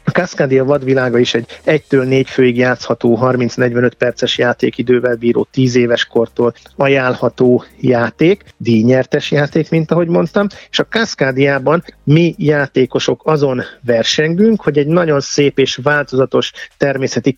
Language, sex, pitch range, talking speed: Hungarian, male, 125-155 Hz, 125 wpm